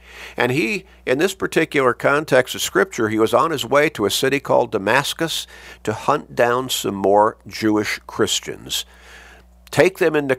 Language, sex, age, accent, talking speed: English, male, 50-69, American, 160 wpm